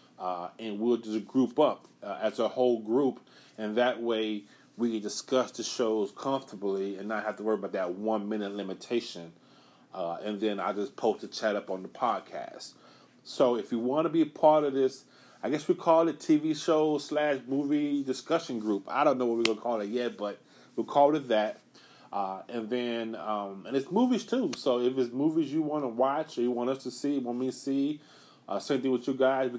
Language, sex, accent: English, male, American